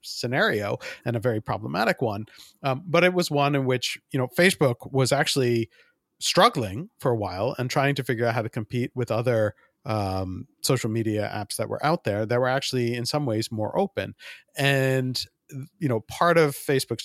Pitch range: 115-145 Hz